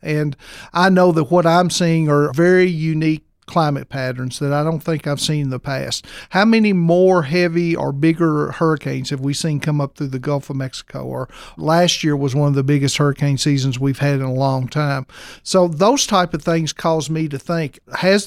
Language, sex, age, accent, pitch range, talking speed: English, male, 50-69, American, 145-175 Hz, 210 wpm